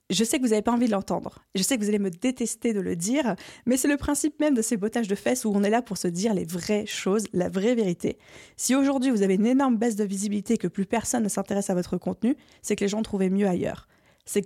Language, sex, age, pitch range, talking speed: French, female, 20-39, 200-245 Hz, 280 wpm